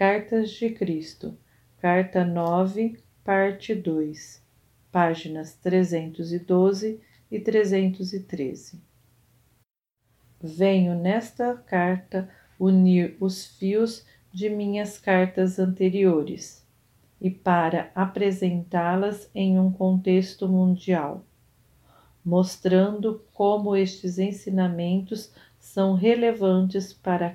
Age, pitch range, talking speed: 40-59, 175-205 Hz, 75 wpm